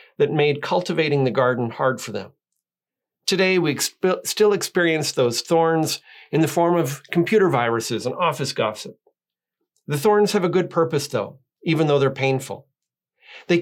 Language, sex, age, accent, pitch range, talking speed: English, male, 40-59, American, 140-180 Hz, 155 wpm